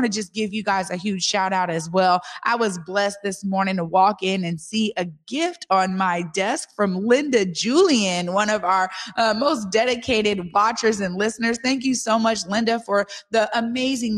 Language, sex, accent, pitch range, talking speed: English, female, American, 180-230 Hz, 195 wpm